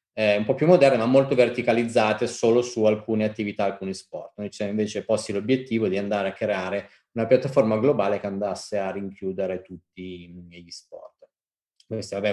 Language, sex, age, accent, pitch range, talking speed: Italian, male, 30-49, native, 95-115 Hz, 165 wpm